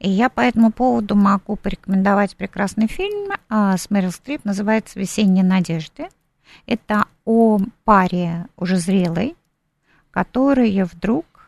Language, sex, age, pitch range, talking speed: Russian, female, 50-69, 165-230 Hz, 115 wpm